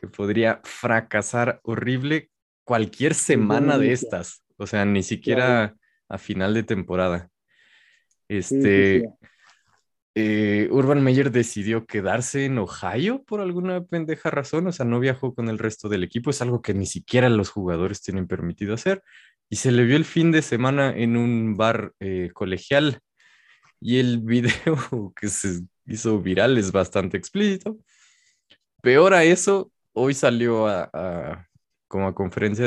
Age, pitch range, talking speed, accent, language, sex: 20-39, 95-135 Hz, 145 wpm, Mexican, Spanish, male